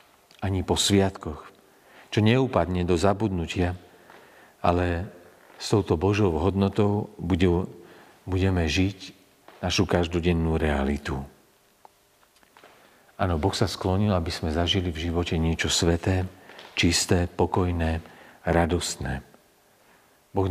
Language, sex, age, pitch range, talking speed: Slovak, male, 50-69, 85-110 Hz, 95 wpm